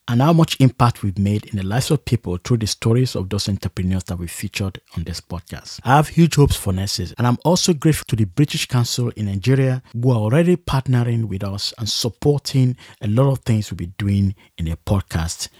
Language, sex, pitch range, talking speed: English, male, 100-135 Hz, 220 wpm